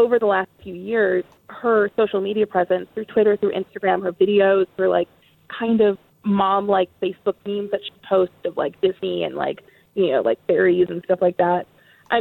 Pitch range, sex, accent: 185-215 Hz, female, American